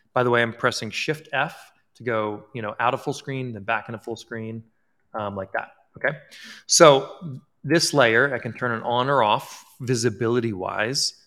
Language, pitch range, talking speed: English, 110-135 Hz, 185 wpm